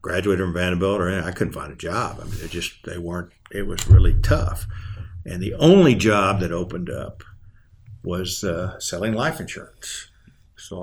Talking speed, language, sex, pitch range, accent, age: 170 wpm, English, male, 90-105 Hz, American, 60-79